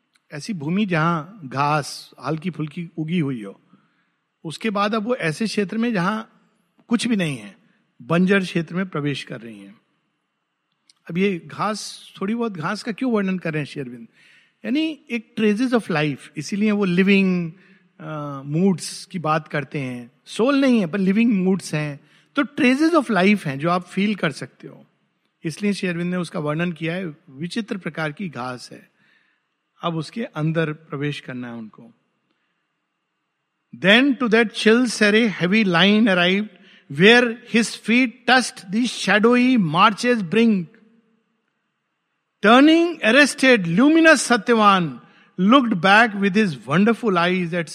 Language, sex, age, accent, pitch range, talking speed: Hindi, male, 50-69, native, 160-230 Hz, 145 wpm